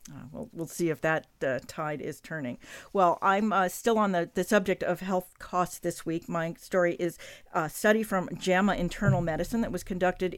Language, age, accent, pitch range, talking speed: English, 50-69, American, 175-225 Hz, 195 wpm